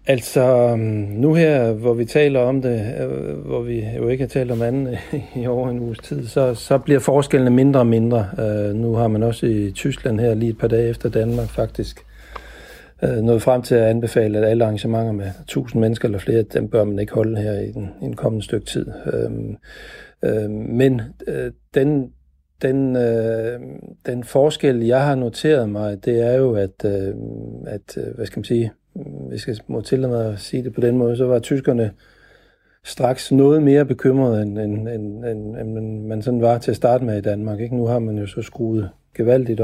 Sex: male